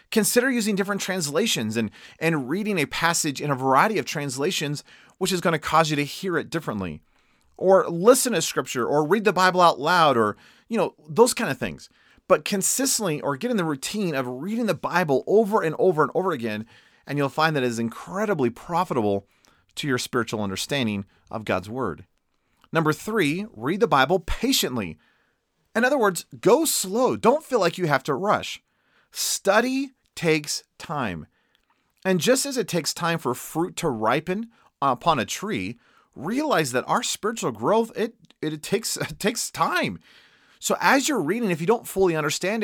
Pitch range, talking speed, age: 140-205 Hz, 175 wpm, 30-49